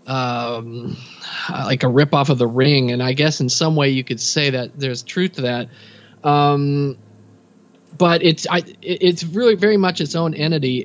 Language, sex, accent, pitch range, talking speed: English, male, American, 130-155 Hz, 185 wpm